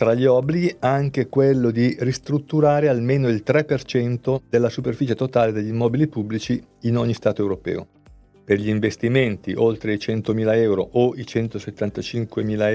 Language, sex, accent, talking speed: Italian, male, native, 140 wpm